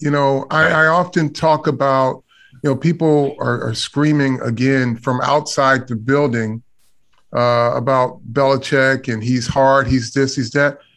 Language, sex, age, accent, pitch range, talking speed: English, male, 30-49, American, 150-210 Hz, 155 wpm